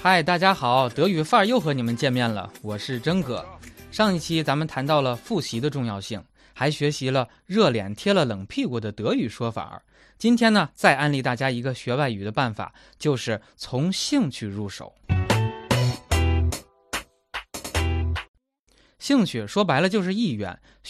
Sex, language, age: male, Chinese, 20-39